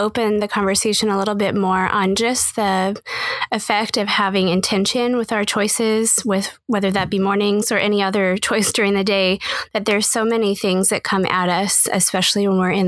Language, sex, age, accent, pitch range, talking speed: English, female, 20-39, American, 190-210 Hz, 195 wpm